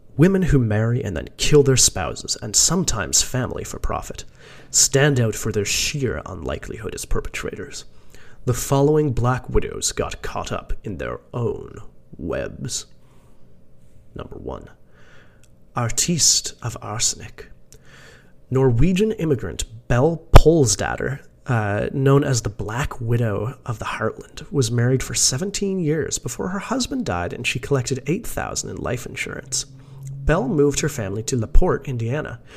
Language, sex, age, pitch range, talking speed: English, male, 30-49, 115-145 Hz, 135 wpm